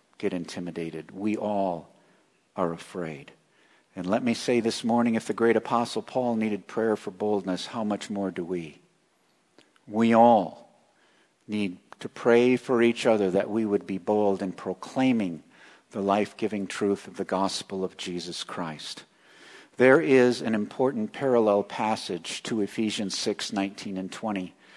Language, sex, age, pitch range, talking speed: English, male, 50-69, 100-130 Hz, 150 wpm